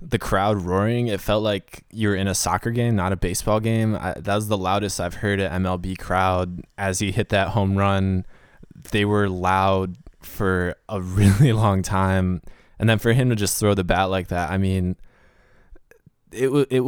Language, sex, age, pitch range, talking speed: English, male, 20-39, 95-115 Hz, 190 wpm